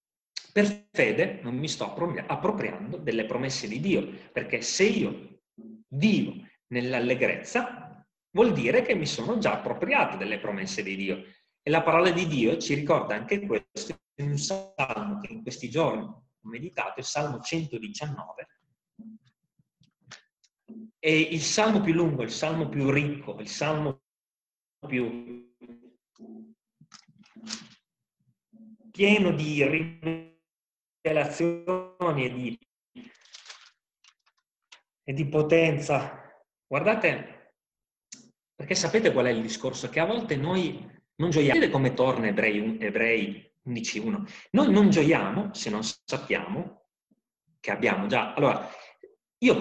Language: Italian